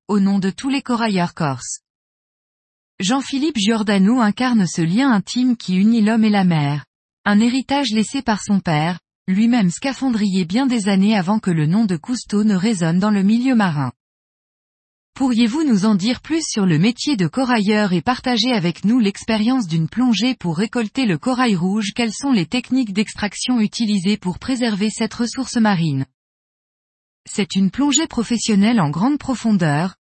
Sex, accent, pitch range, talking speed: female, French, 185-245 Hz, 165 wpm